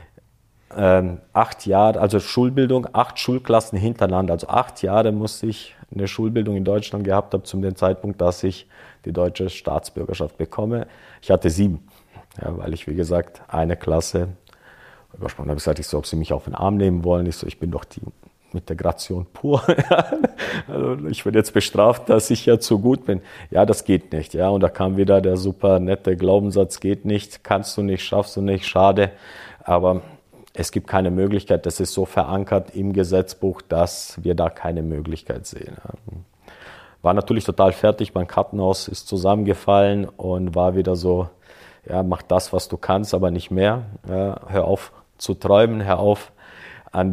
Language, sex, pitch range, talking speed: German, male, 90-105 Hz, 175 wpm